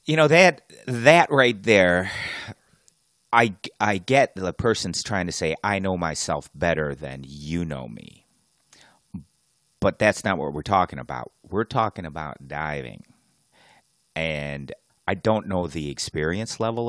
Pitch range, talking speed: 80-110 Hz, 140 wpm